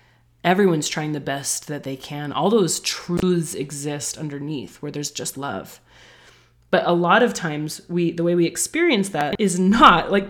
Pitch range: 155-195 Hz